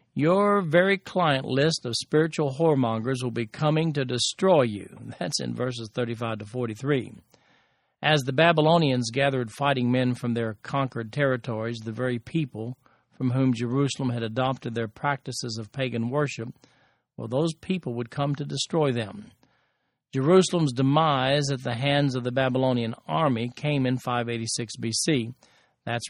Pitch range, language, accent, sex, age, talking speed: 120-155 Hz, English, American, male, 50-69, 145 wpm